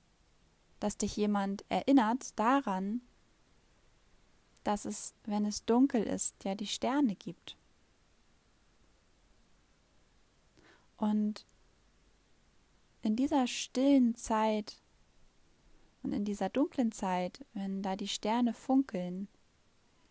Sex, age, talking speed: female, 10-29, 90 wpm